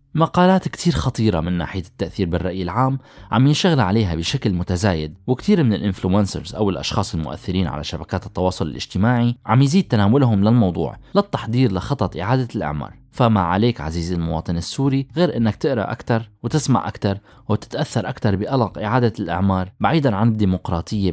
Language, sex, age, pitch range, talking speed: Arabic, male, 20-39, 95-125 Hz, 140 wpm